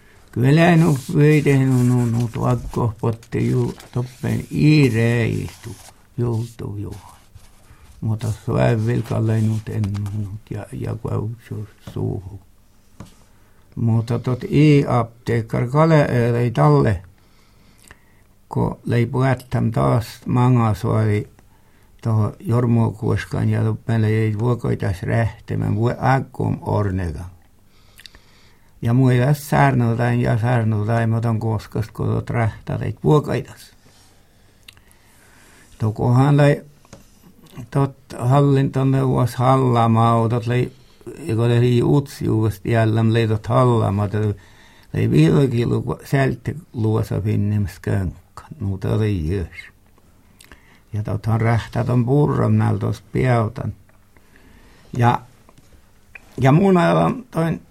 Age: 60-79